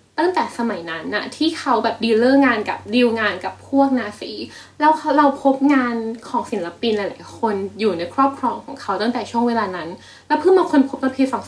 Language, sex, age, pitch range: Thai, female, 10-29, 220-295 Hz